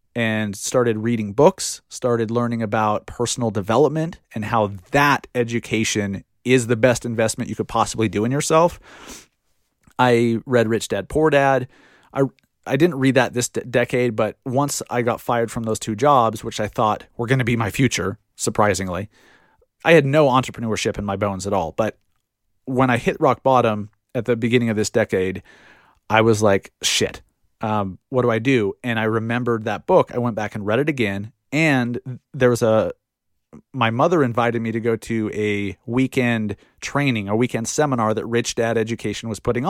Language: English